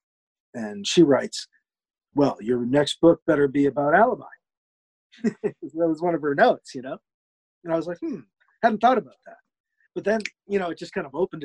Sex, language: male, English